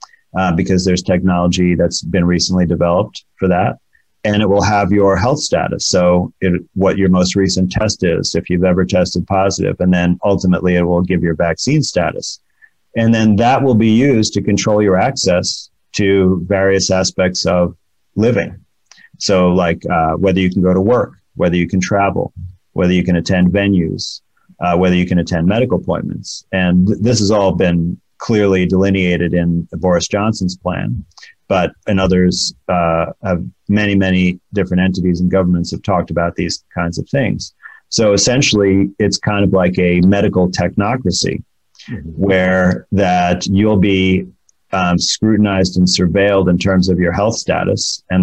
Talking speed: 160 wpm